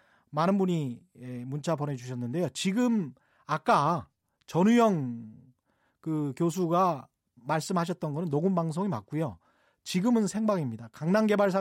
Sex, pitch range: male, 140-200 Hz